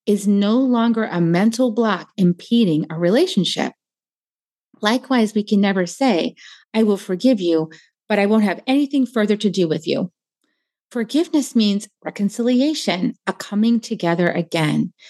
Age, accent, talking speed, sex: 30-49, American, 140 wpm, female